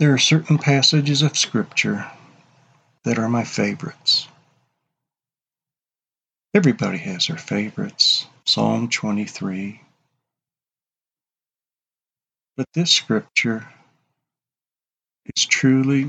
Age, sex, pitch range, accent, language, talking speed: 50-69, male, 115-145 Hz, American, English, 80 wpm